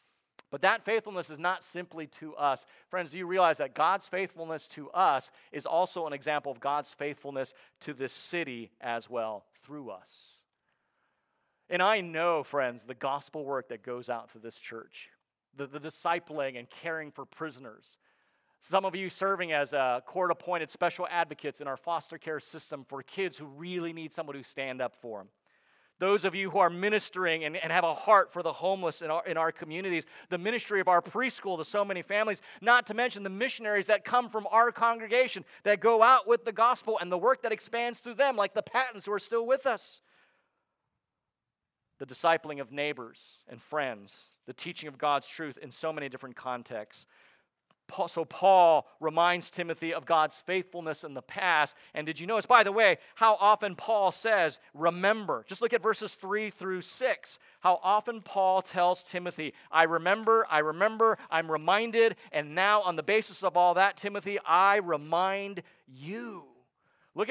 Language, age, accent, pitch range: English, 40-59, American, 150-205 Hz